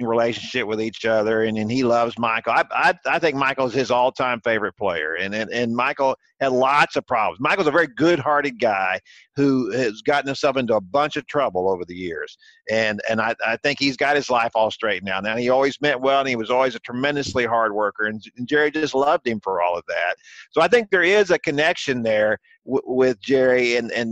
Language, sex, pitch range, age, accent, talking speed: English, male, 115-140 Hz, 50-69, American, 235 wpm